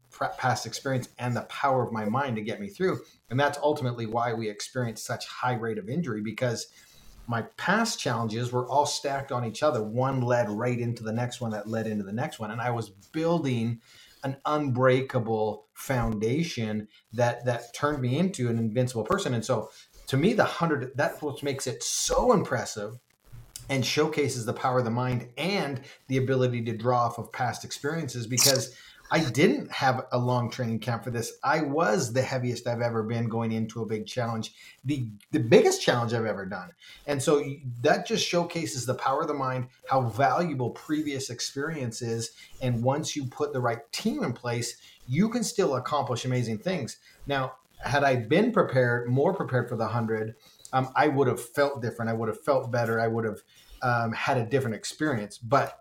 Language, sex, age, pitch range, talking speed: English, male, 30-49, 115-140 Hz, 190 wpm